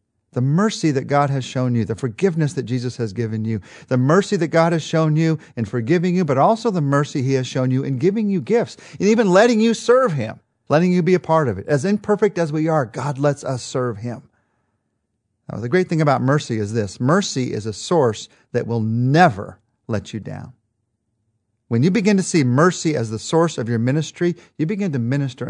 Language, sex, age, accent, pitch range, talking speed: English, male, 40-59, American, 115-160 Hz, 215 wpm